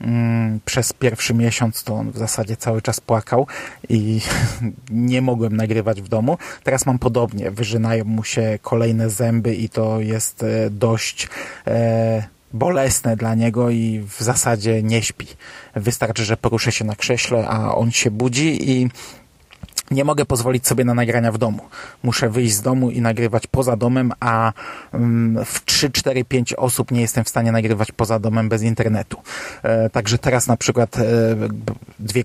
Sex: male